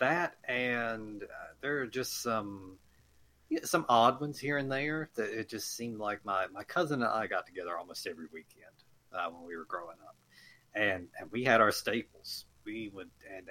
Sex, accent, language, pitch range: male, American, English, 80-130 Hz